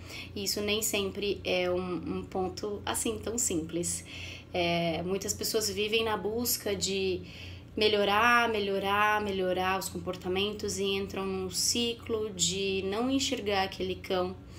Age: 20-39